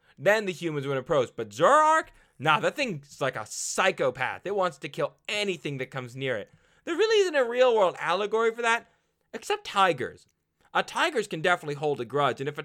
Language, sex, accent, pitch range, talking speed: English, male, American, 145-215 Hz, 200 wpm